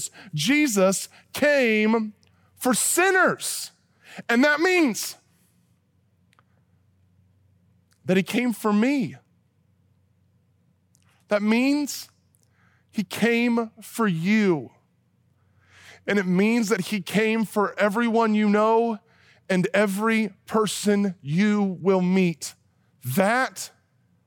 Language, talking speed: English, 85 wpm